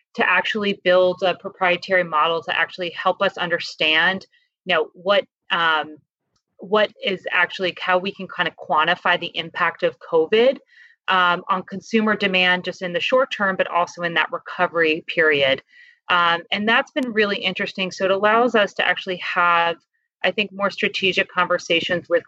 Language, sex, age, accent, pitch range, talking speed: English, female, 30-49, American, 170-215 Hz, 165 wpm